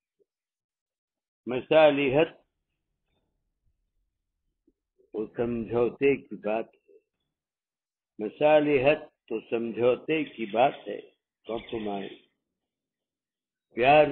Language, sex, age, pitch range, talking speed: Urdu, male, 60-79, 100-140 Hz, 55 wpm